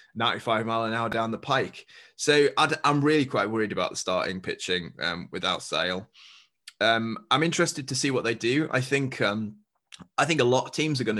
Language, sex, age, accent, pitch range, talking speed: English, male, 20-39, British, 95-125 Hz, 210 wpm